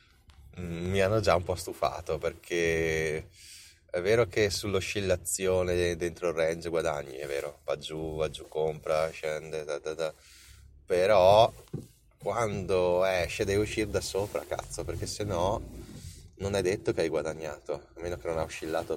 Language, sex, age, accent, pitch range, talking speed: Italian, male, 20-39, native, 80-95 Hz, 155 wpm